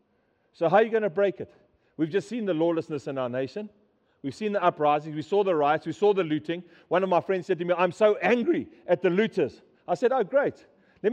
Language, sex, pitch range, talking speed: English, male, 155-195 Hz, 250 wpm